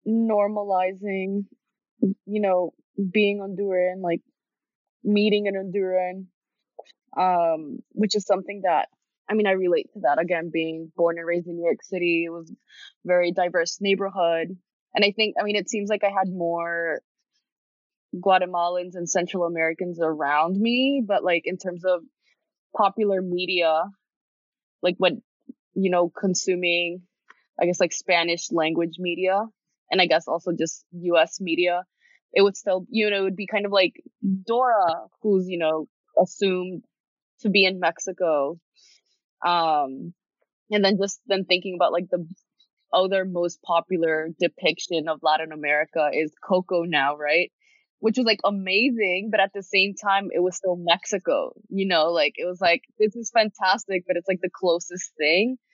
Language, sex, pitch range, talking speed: English, female, 175-210 Hz, 155 wpm